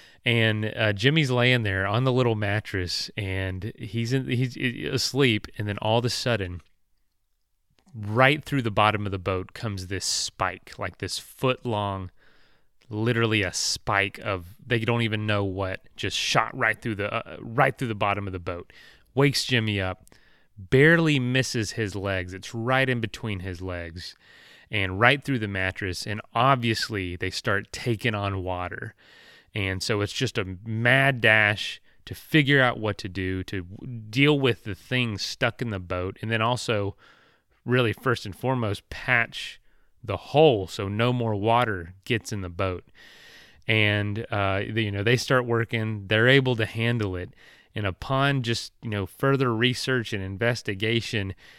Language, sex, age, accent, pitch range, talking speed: English, male, 30-49, American, 100-125 Hz, 165 wpm